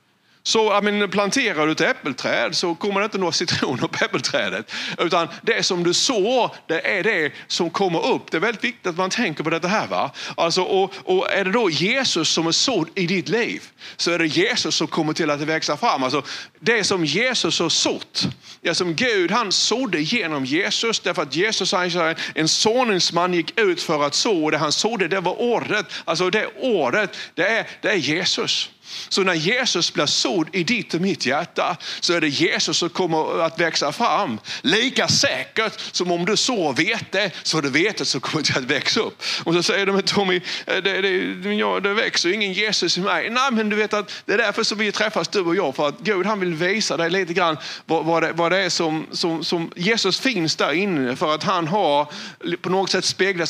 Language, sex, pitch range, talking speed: Swedish, male, 165-205 Hz, 215 wpm